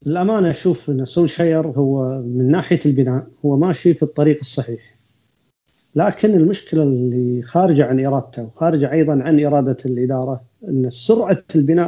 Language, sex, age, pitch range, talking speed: Arabic, male, 40-59, 130-160 Hz, 140 wpm